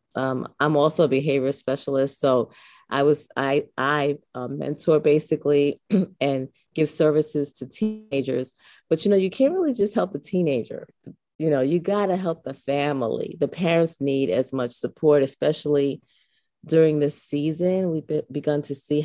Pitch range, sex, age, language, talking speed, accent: 140-165 Hz, female, 30-49, English, 165 wpm, American